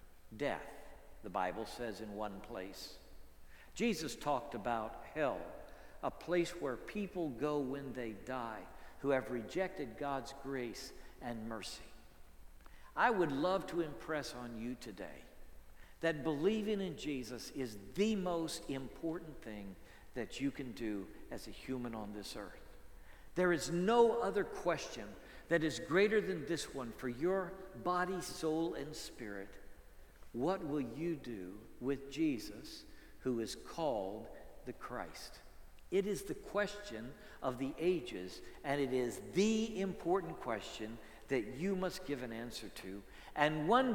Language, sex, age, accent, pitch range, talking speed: English, male, 60-79, American, 105-175 Hz, 140 wpm